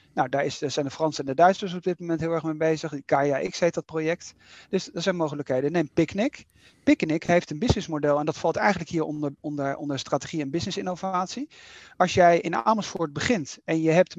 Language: Dutch